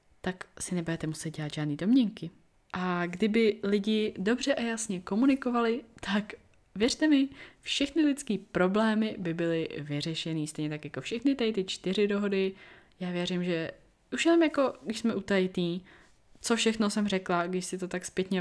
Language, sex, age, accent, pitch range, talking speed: Czech, female, 20-39, native, 180-225 Hz, 160 wpm